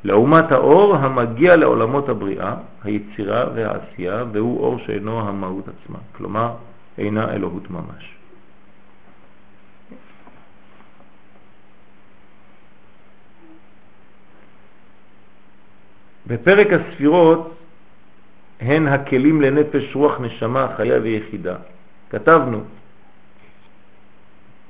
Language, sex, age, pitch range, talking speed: French, male, 50-69, 100-135 Hz, 65 wpm